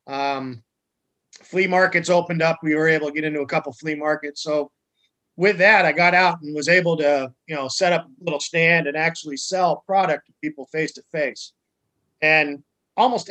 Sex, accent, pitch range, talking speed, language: male, American, 145-175 Hz, 195 wpm, English